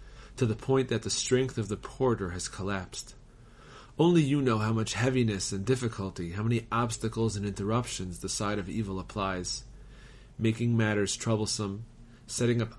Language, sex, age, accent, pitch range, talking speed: English, male, 30-49, American, 105-125 Hz, 160 wpm